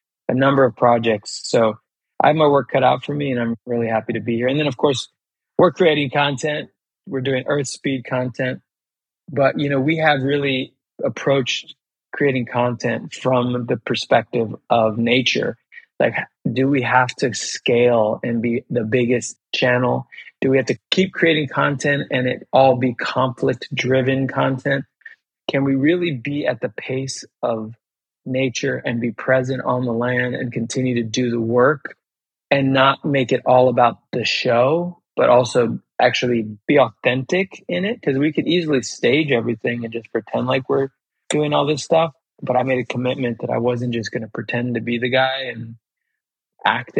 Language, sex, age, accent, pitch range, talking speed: English, male, 20-39, American, 120-140 Hz, 180 wpm